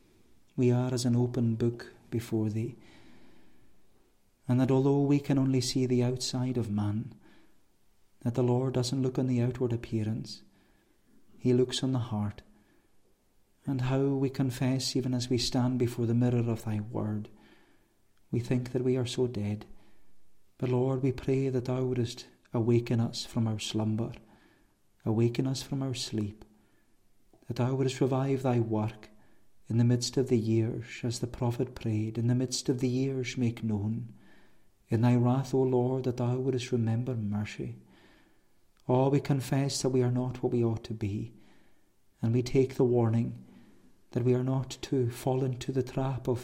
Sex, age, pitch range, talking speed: male, 40-59, 110-130 Hz, 170 wpm